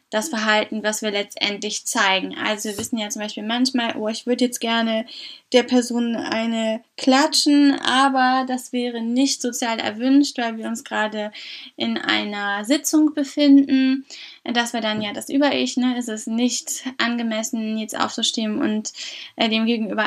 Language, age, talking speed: German, 10-29, 160 wpm